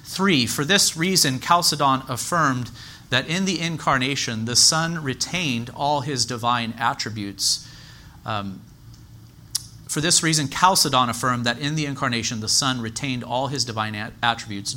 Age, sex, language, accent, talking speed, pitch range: 40-59, male, English, American, 140 wpm, 115-145 Hz